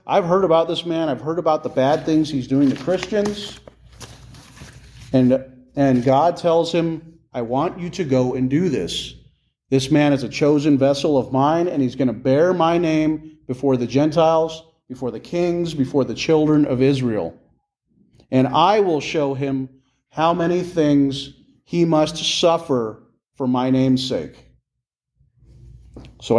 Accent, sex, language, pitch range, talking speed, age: American, male, English, 130-170 Hz, 160 wpm, 30-49